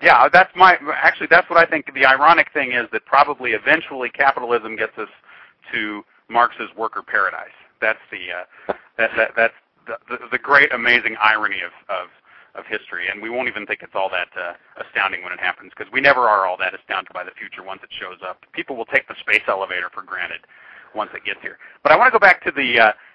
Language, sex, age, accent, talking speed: English, male, 40-59, American, 220 wpm